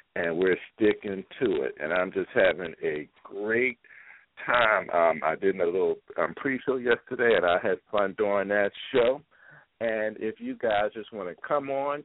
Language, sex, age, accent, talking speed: English, male, 50-69, American, 180 wpm